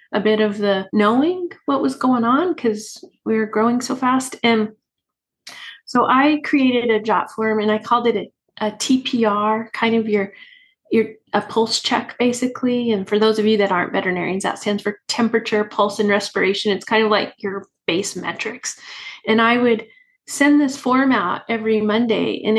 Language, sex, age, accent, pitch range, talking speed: English, female, 30-49, American, 215-260 Hz, 185 wpm